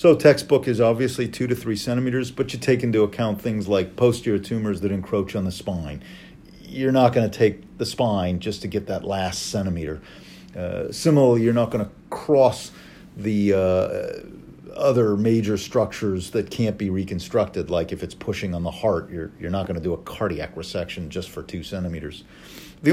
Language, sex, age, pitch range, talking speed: English, male, 50-69, 100-125 Hz, 190 wpm